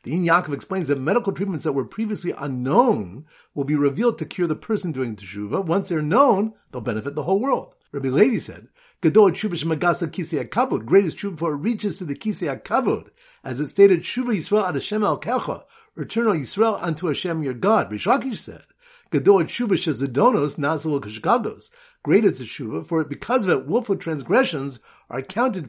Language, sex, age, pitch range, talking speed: English, male, 50-69, 145-210 Hz, 175 wpm